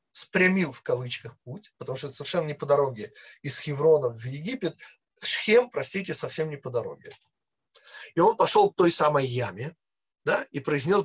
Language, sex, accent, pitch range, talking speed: Russian, male, native, 140-205 Hz, 170 wpm